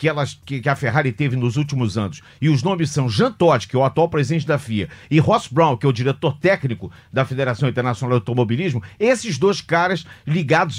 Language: Portuguese